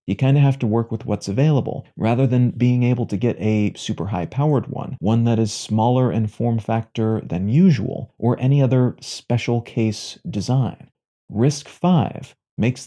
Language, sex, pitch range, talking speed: English, male, 110-135 Hz, 175 wpm